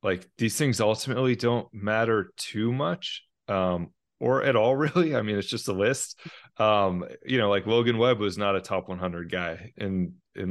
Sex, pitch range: male, 95-120 Hz